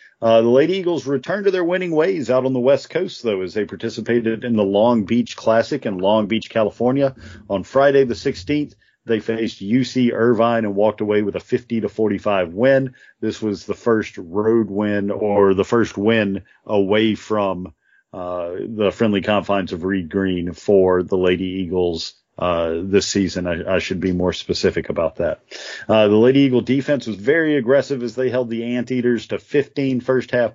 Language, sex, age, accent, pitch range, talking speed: English, male, 40-59, American, 100-125 Hz, 185 wpm